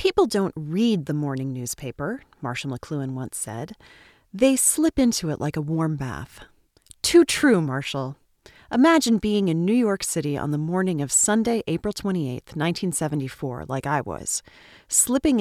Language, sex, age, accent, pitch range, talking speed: English, female, 30-49, American, 150-210 Hz, 150 wpm